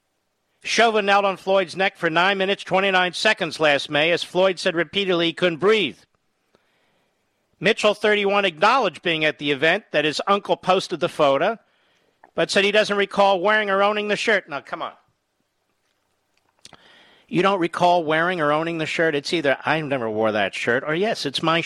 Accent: American